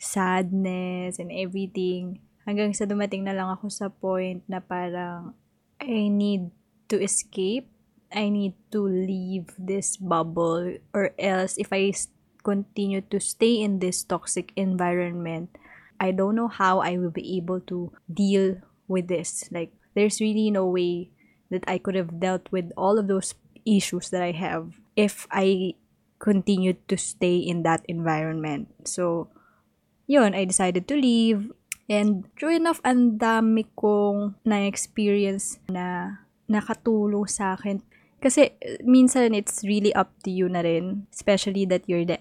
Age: 20-39